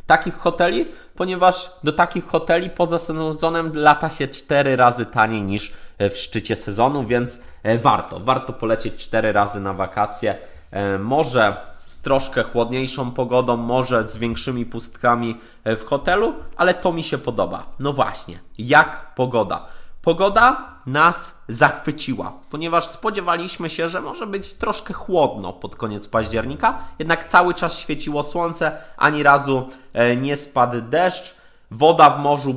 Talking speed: 135 wpm